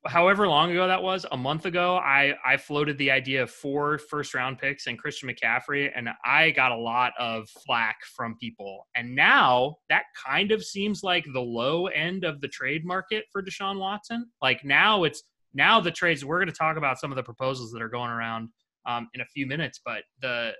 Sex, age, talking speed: male, 30-49, 215 wpm